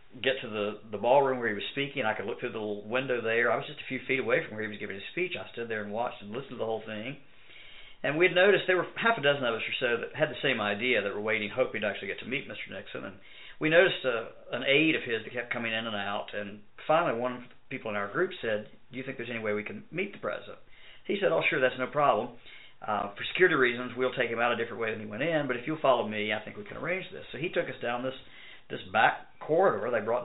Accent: American